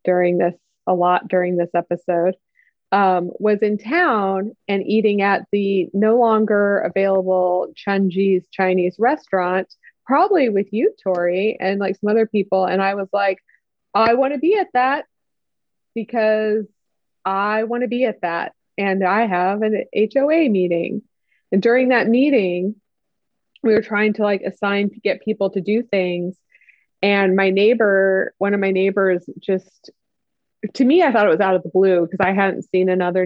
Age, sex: 20-39, female